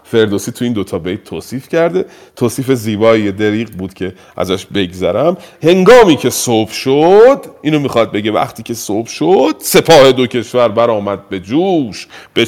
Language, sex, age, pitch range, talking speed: Persian, male, 40-59, 105-150 Hz, 160 wpm